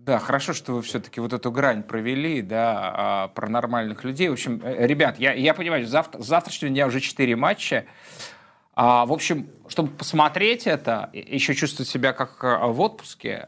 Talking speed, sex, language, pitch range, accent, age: 155 wpm, male, Russian, 120-150 Hz, native, 20-39